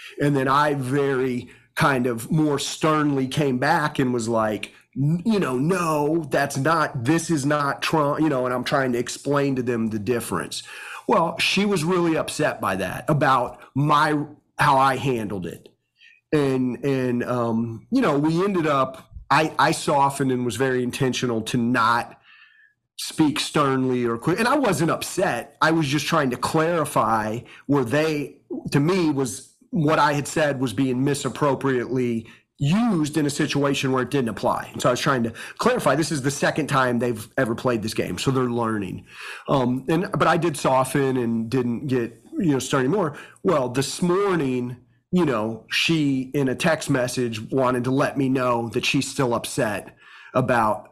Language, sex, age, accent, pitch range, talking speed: English, male, 30-49, American, 120-150 Hz, 175 wpm